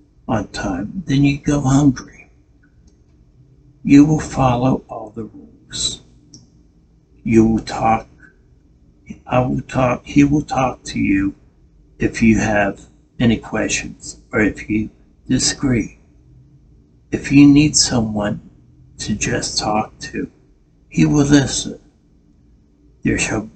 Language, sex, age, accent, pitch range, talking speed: English, male, 60-79, American, 100-135 Hz, 115 wpm